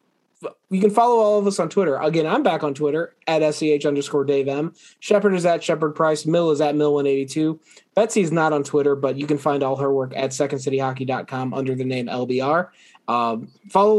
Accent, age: American, 20-39